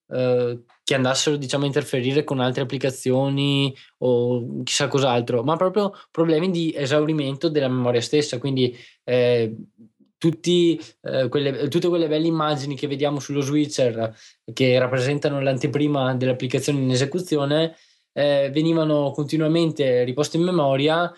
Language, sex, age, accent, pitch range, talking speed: Italian, male, 20-39, native, 125-150 Hz, 115 wpm